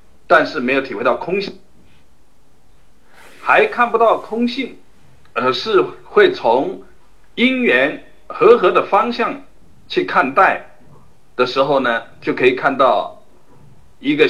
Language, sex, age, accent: Chinese, male, 60-79, native